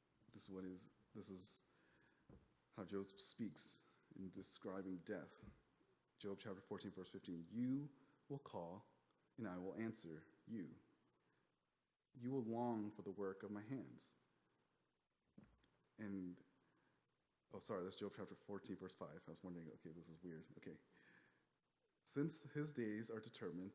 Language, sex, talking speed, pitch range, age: English, male, 140 wpm, 100-130 Hz, 30-49